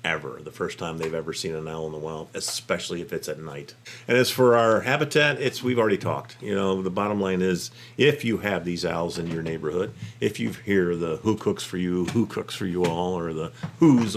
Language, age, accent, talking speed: English, 50-69, American, 235 wpm